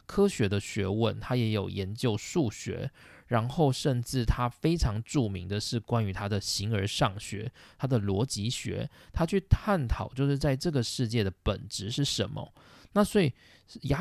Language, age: Chinese, 20-39